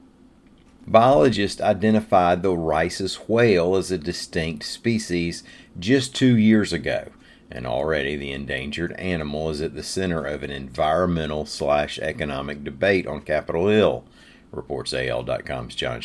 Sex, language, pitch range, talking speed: male, English, 75-90 Hz, 120 wpm